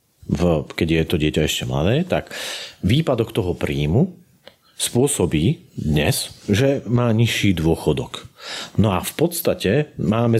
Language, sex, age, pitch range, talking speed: Slovak, male, 40-59, 80-115 Hz, 125 wpm